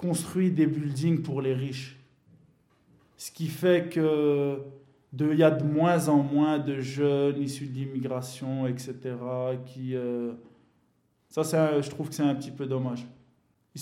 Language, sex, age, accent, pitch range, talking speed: French, male, 20-39, French, 135-155 Hz, 155 wpm